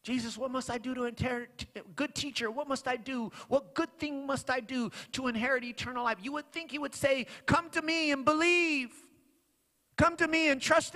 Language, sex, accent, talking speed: English, male, American, 215 wpm